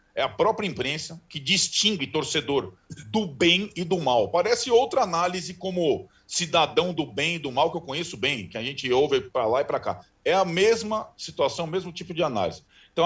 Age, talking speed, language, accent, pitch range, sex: 40-59, 205 wpm, Portuguese, Brazilian, 150-200 Hz, male